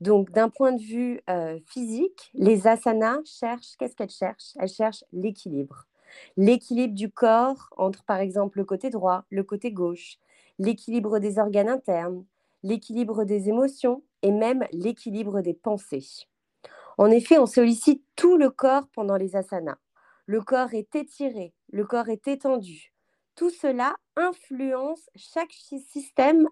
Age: 30-49